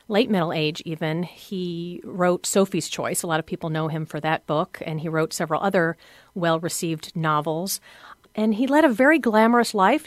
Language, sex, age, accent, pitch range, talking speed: English, female, 40-59, American, 175-225 Hz, 185 wpm